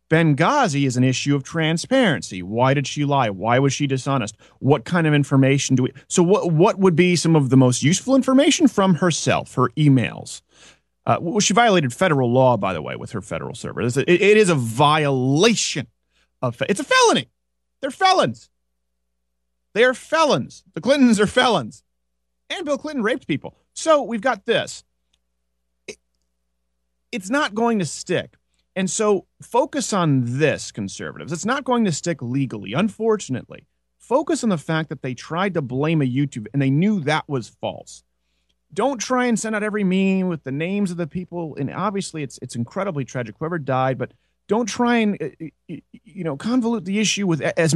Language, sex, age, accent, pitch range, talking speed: English, male, 30-49, American, 125-200 Hz, 180 wpm